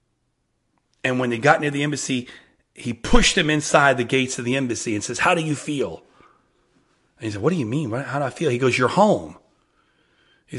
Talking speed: 215 wpm